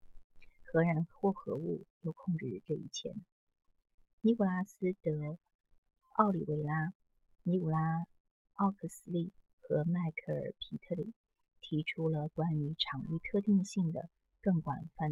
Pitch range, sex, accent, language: 150-195 Hz, female, native, Chinese